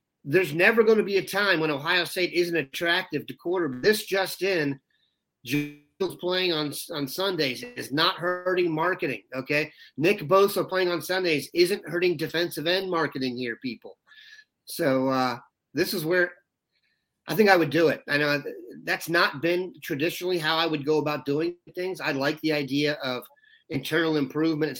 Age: 30-49